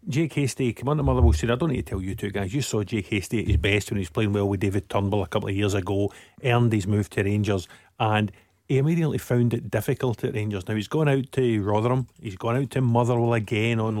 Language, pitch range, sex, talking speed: English, 110-135 Hz, male, 260 wpm